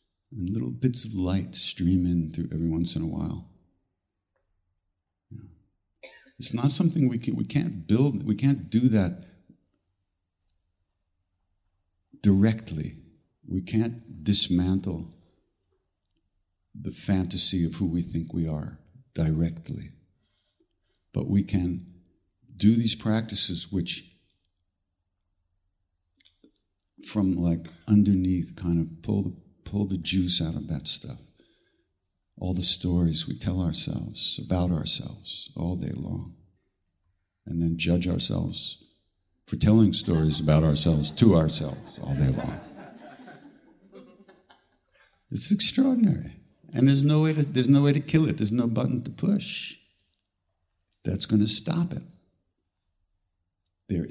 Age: 60-79